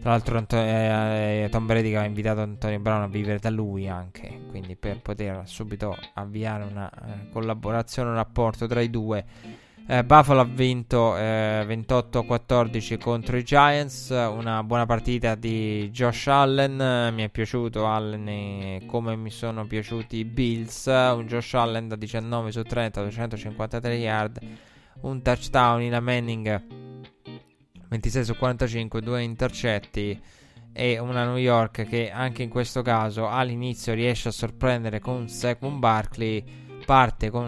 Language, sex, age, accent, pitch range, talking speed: Italian, male, 20-39, native, 105-120 Hz, 145 wpm